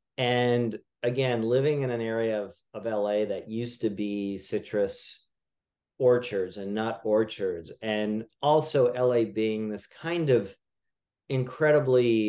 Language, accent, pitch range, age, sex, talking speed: English, American, 105-125 Hz, 40-59, male, 125 wpm